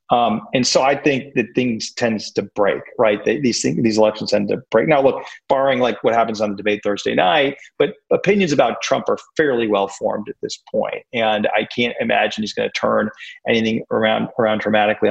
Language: English